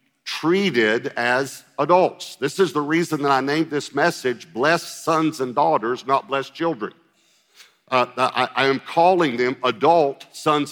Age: 50-69